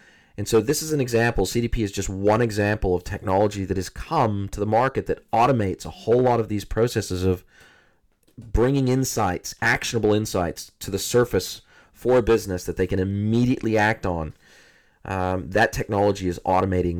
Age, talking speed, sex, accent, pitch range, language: 30-49, 175 wpm, male, American, 95-110 Hz, English